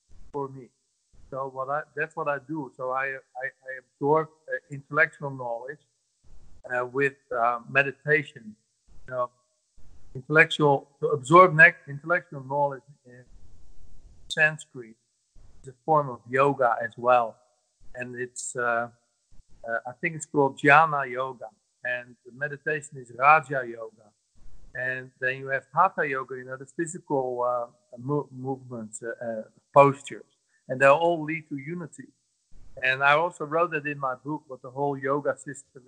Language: English